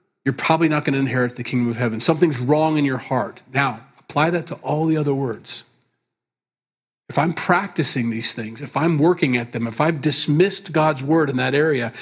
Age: 40-59